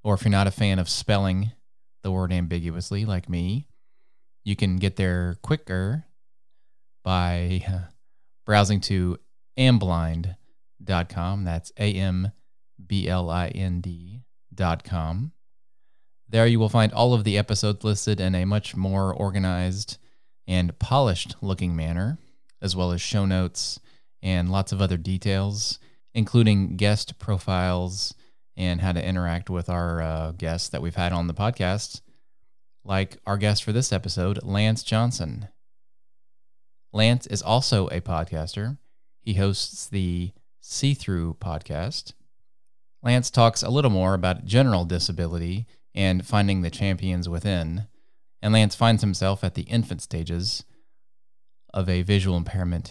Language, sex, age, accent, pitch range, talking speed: English, male, 20-39, American, 90-110 Hz, 125 wpm